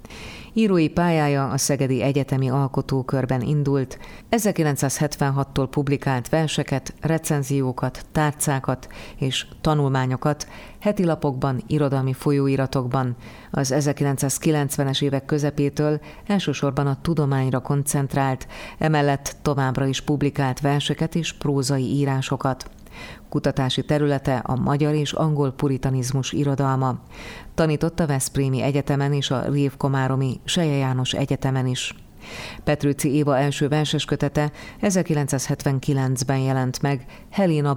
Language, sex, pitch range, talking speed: Hungarian, female, 130-150 Hz, 95 wpm